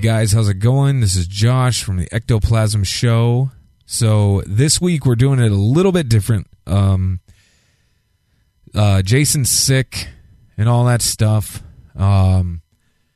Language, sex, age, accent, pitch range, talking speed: English, male, 30-49, American, 95-120 Hz, 135 wpm